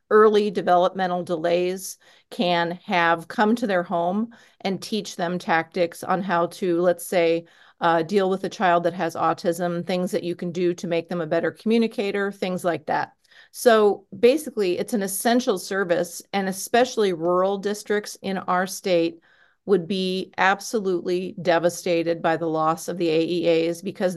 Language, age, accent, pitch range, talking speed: English, 40-59, American, 175-205 Hz, 160 wpm